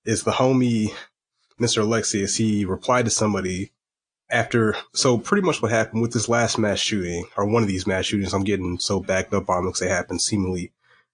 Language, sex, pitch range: English, male, 100-120 Hz